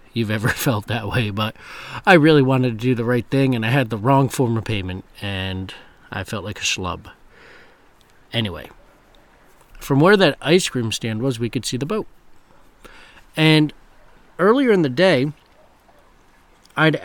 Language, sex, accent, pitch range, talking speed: English, male, American, 110-140 Hz, 165 wpm